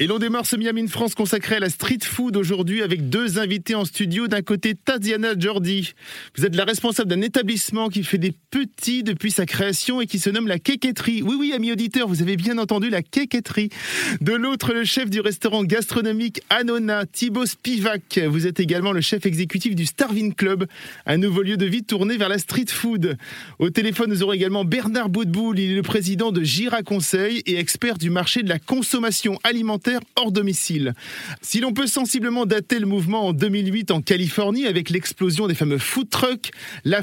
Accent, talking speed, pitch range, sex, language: French, 195 wpm, 190-235 Hz, male, French